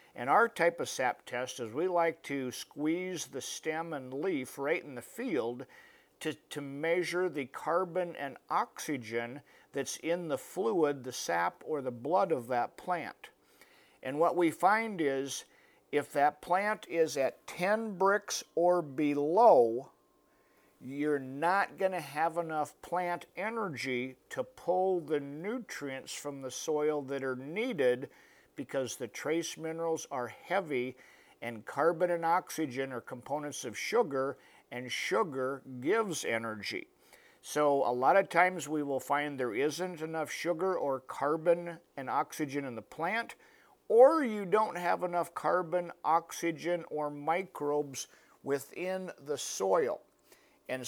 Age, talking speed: 50-69, 140 wpm